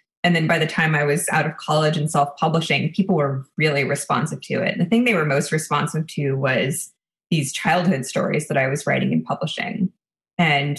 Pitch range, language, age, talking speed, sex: 155-195 Hz, English, 20-39, 205 wpm, female